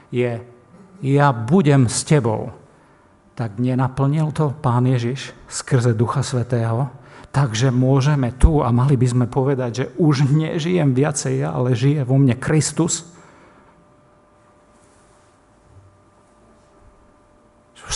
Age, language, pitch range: 50-69, Slovak, 120-160 Hz